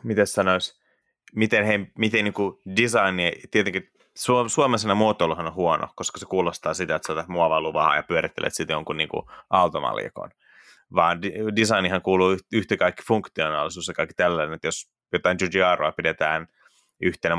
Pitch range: 85-100 Hz